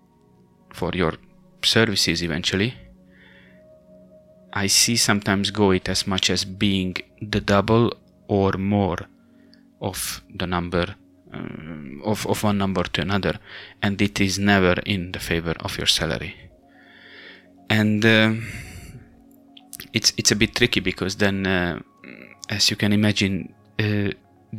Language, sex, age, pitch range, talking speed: English, male, 30-49, 90-105 Hz, 125 wpm